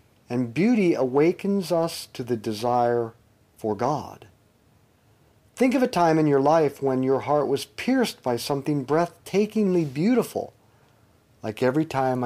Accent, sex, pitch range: American, male, 115-160 Hz